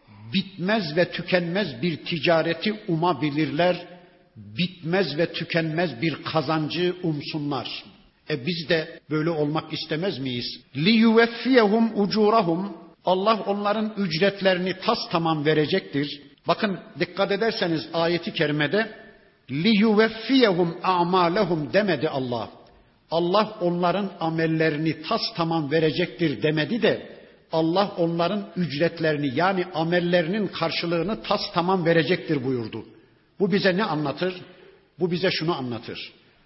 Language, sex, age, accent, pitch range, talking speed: Turkish, male, 60-79, native, 160-200 Hz, 105 wpm